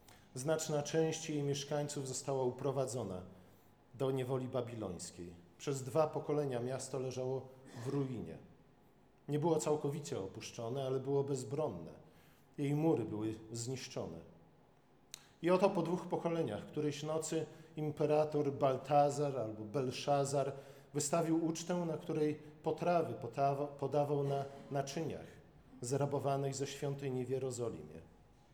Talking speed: 110 wpm